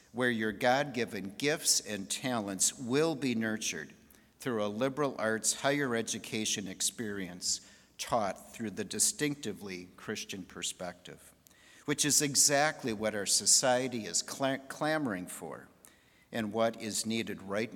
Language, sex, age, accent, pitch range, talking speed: English, male, 50-69, American, 105-135 Hz, 120 wpm